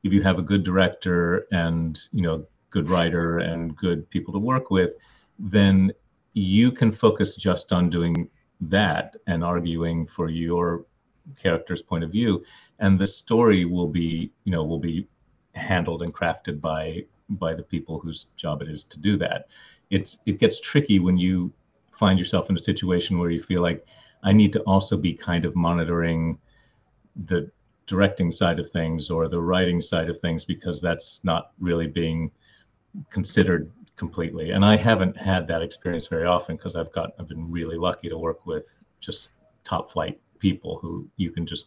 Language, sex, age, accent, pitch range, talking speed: English, male, 40-59, American, 85-95 Hz, 175 wpm